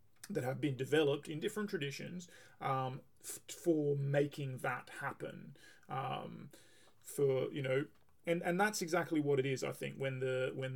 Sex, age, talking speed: male, 30-49, 160 wpm